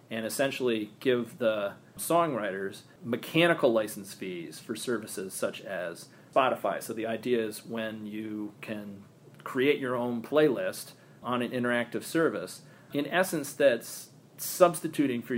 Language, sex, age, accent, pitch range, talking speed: English, male, 40-59, American, 110-135 Hz, 130 wpm